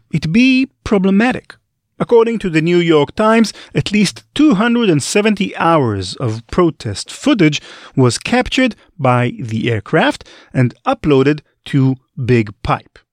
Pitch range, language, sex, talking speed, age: 120-190 Hz, English, male, 120 wpm, 40-59